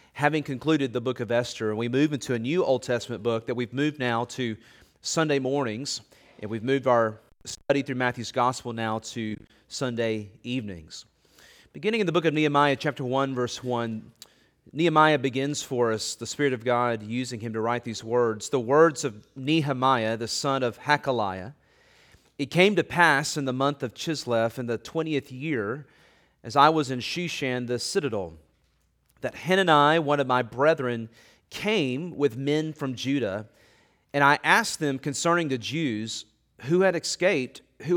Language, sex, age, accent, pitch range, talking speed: English, male, 30-49, American, 120-150 Hz, 170 wpm